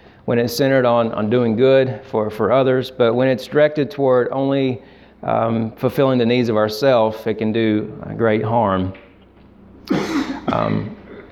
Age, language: 40-59, Bengali